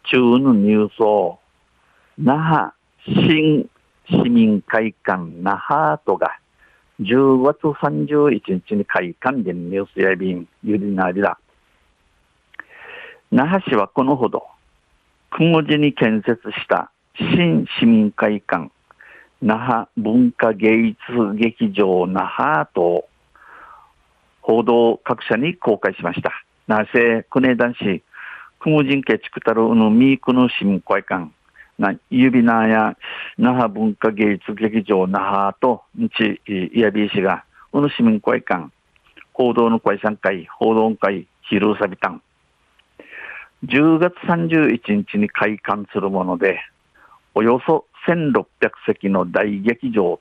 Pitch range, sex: 100-145 Hz, male